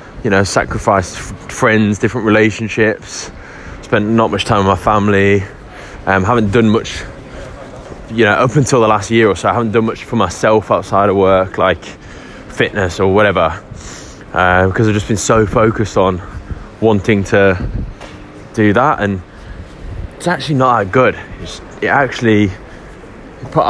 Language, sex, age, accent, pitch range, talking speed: English, male, 10-29, British, 95-115 Hz, 155 wpm